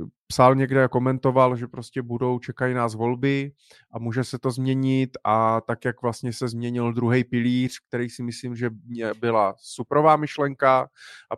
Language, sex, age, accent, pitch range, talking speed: Czech, male, 30-49, native, 115-135 Hz, 165 wpm